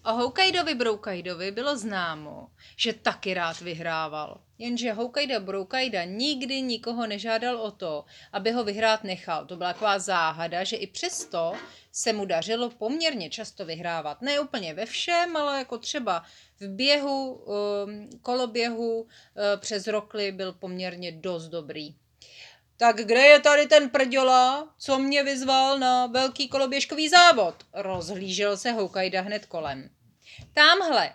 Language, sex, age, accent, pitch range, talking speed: Czech, female, 30-49, native, 190-265 Hz, 135 wpm